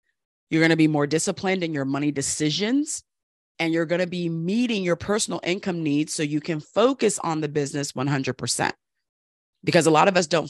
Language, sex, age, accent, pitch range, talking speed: English, female, 30-49, American, 140-170 Hz, 185 wpm